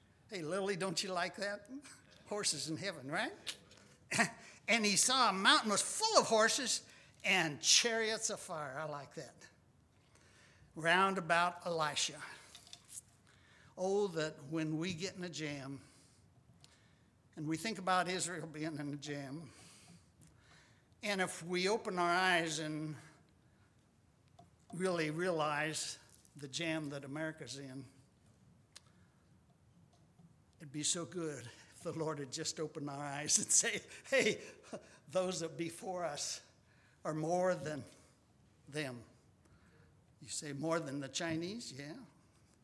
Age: 60-79